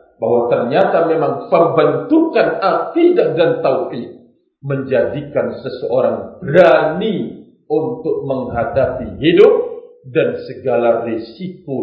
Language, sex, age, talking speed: Indonesian, male, 50-69, 80 wpm